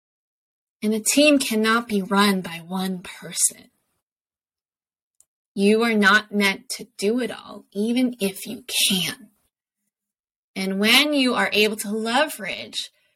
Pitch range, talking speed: 205-255 Hz, 130 wpm